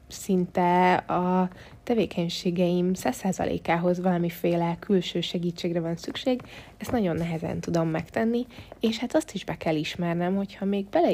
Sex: female